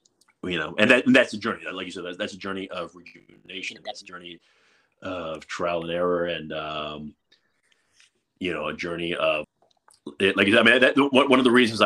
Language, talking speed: English, 195 wpm